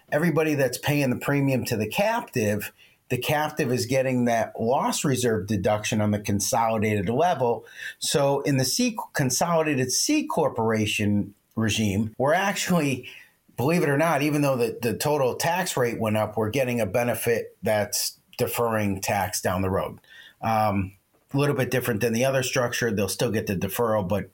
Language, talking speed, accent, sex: English, 165 wpm, American, male